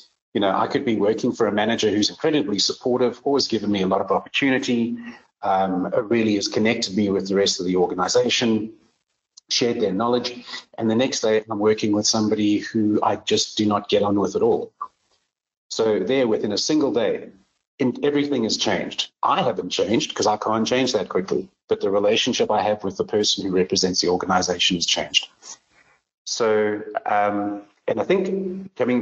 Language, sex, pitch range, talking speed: English, male, 100-125 Hz, 185 wpm